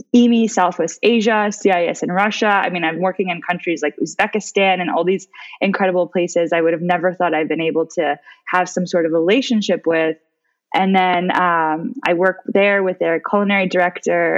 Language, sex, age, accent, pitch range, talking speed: English, female, 20-39, American, 170-200 Hz, 185 wpm